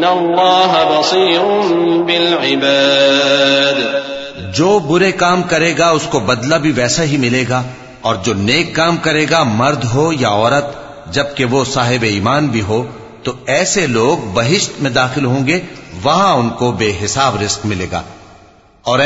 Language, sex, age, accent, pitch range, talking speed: English, male, 40-59, Pakistani, 115-170 Hz, 155 wpm